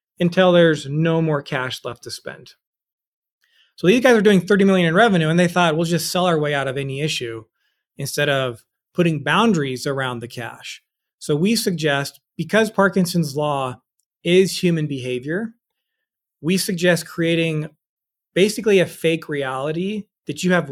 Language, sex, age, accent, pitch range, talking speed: English, male, 30-49, American, 140-180 Hz, 160 wpm